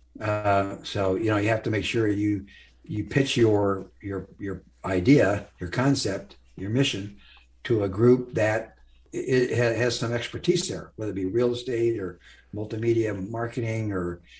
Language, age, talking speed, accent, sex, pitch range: English, 60-79, 165 wpm, American, male, 95-115 Hz